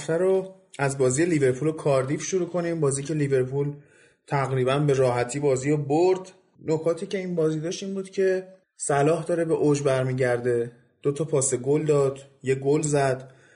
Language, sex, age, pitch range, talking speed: Persian, male, 30-49, 130-155 Hz, 170 wpm